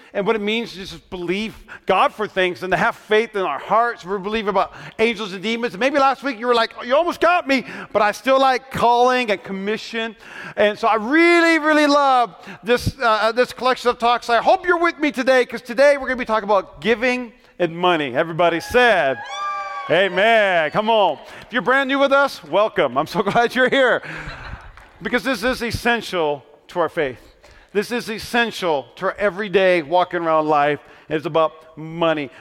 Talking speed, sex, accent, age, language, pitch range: 200 wpm, male, American, 40-59, English, 180-245 Hz